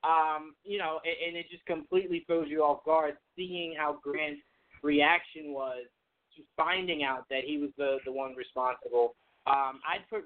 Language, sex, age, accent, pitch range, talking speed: English, male, 20-39, American, 145-185 Hz, 180 wpm